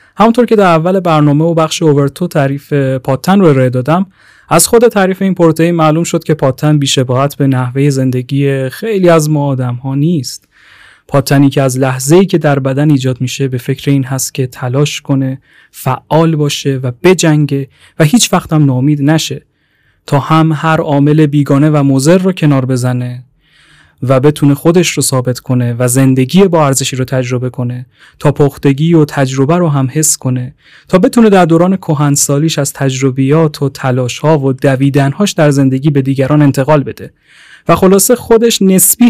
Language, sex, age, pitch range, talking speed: Persian, male, 30-49, 135-170 Hz, 170 wpm